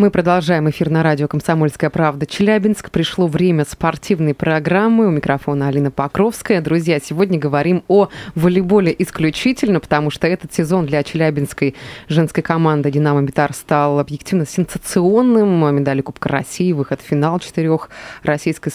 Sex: female